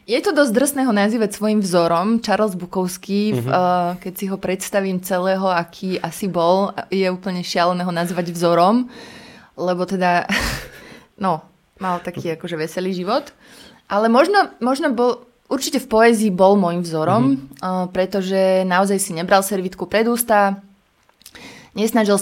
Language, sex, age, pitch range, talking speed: Slovak, female, 20-39, 175-205 Hz, 135 wpm